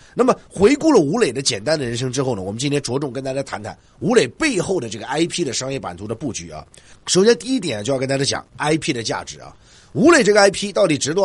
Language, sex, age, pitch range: Chinese, male, 30-49, 120-185 Hz